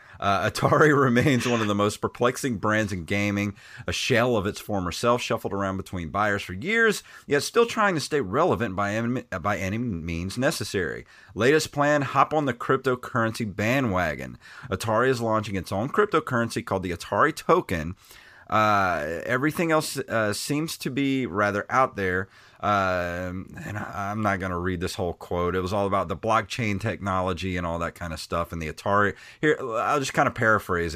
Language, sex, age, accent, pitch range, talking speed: English, male, 30-49, American, 90-125 Hz, 180 wpm